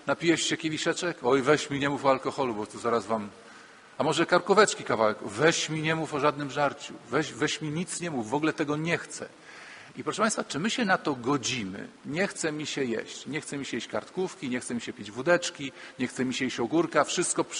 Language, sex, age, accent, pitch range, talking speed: Polish, male, 40-59, native, 130-160 Hz, 235 wpm